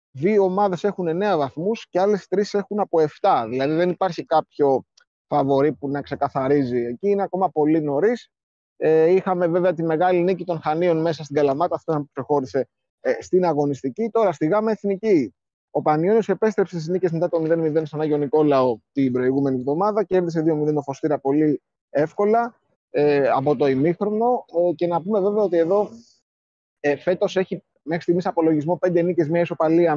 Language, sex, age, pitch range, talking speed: Greek, male, 30-49, 150-195 Hz, 160 wpm